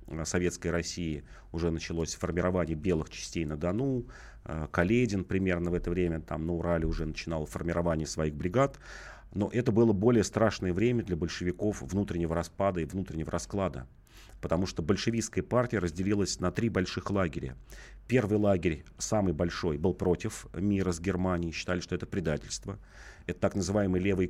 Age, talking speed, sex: 40-59, 150 wpm, male